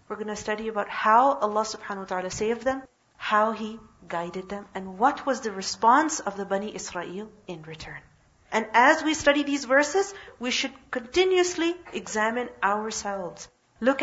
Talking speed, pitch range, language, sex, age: 165 wpm, 205-285 Hz, English, female, 40-59